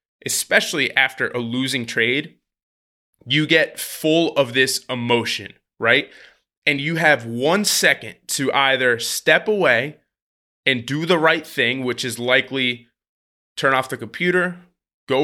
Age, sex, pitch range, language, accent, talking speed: 20-39, male, 120-155 Hz, English, American, 135 wpm